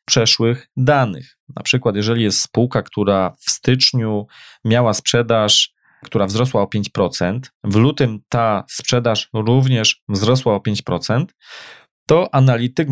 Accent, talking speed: native, 120 wpm